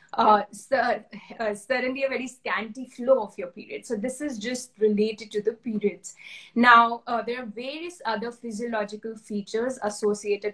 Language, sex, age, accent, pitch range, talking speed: English, female, 20-39, Indian, 205-245 Hz, 155 wpm